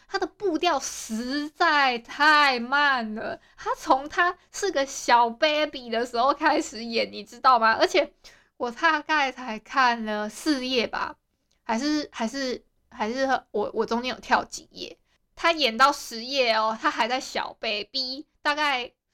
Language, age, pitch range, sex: Chinese, 20-39, 225-290 Hz, female